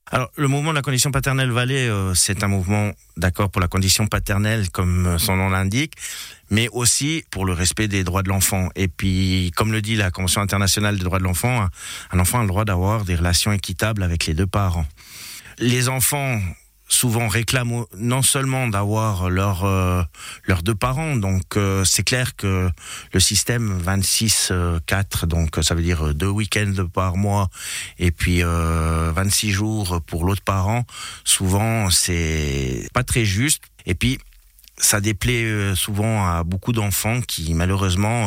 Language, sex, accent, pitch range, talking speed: French, male, French, 90-110 Hz, 165 wpm